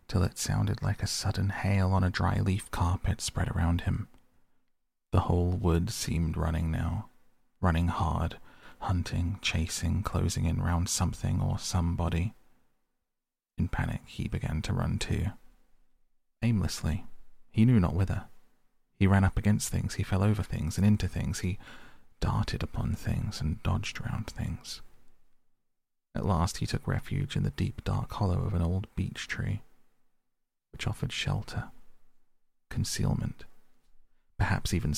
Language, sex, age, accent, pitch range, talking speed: English, male, 30-49, British, 90-115 Hz, 140 wpm